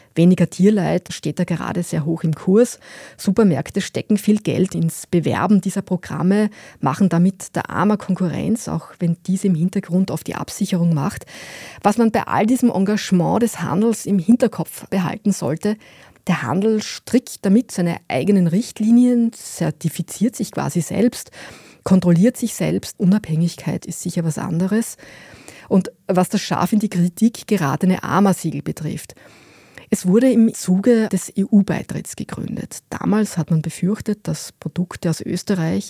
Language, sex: German, female